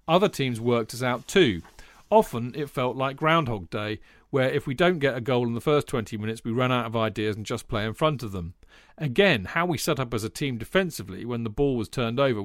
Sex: male